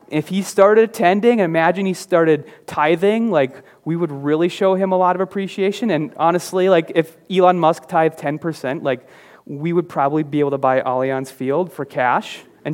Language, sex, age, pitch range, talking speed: English, male, 30-49, 145-190 Hz, 185 wpm